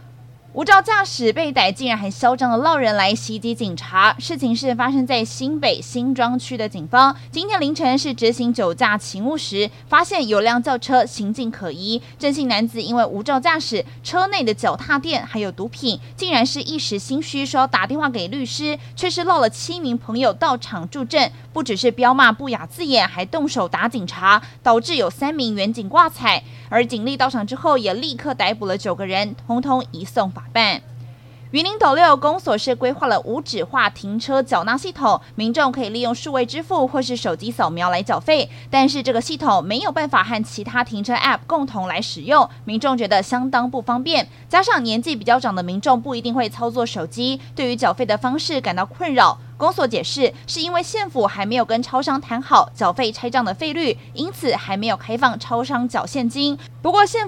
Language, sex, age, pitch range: Chinese, female, 20-39, 210-275 Hz